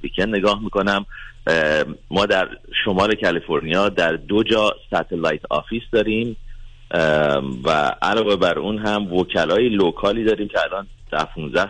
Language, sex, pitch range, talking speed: Persian, male, 90-115 Hz, 130 wpm